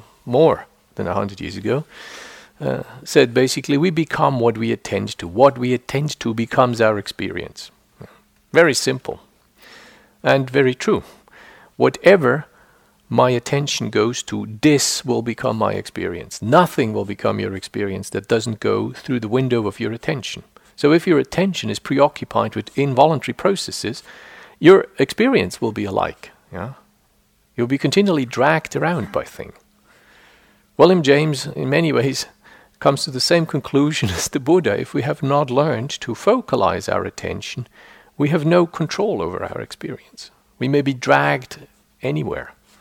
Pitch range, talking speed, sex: 115-145 Hz, 150 wpm, male